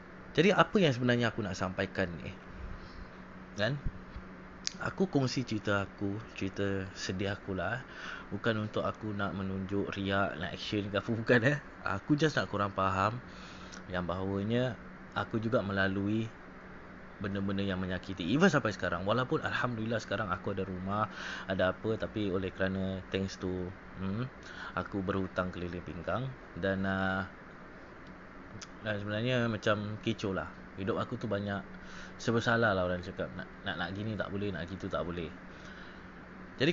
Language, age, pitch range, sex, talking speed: Malay, 20-39, 95-115 Hz, male, 140 wpm